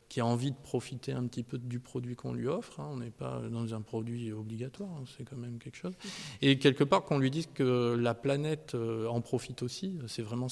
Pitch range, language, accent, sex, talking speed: 120-145 Hz, French, French, male, 220 wpm